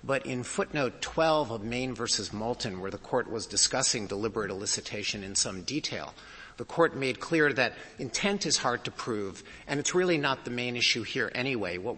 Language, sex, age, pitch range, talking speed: English, male, 50-69, 105-130 Hz, 190 wpm